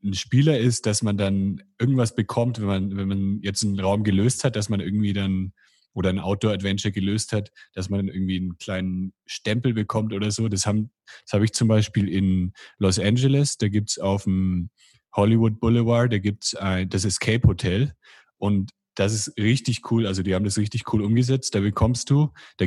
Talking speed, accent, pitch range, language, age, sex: 190 wpm, German, 95-115 Hz, German, 30-49, male